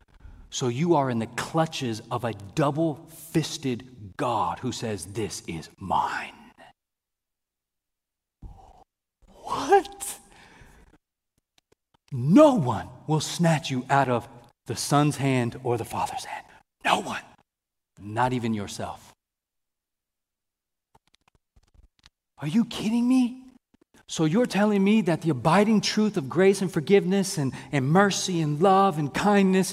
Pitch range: 125-185 Hz